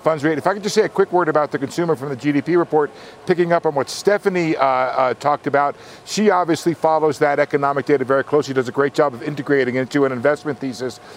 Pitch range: 145-190 Hz